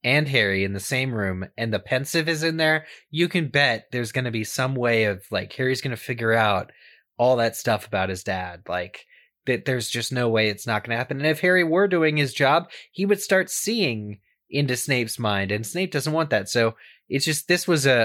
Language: English